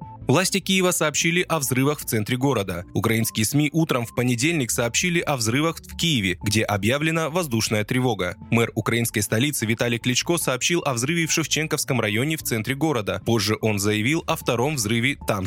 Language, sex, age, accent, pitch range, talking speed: Russian, male, 20-39, native, 115-155 Hz, 165 wpm